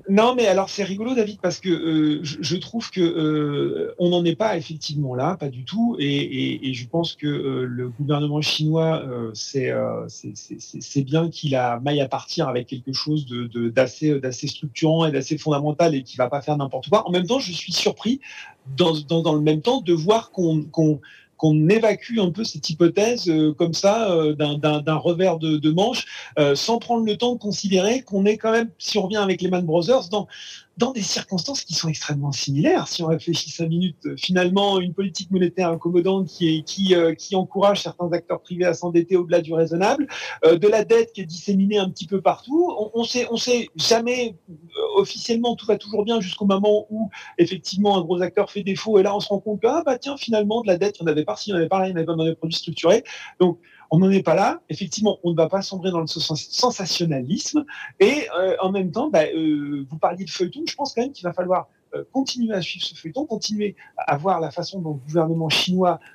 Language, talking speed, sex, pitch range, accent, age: French, 235 wpm, male, 155-205 Hz, French, 40-59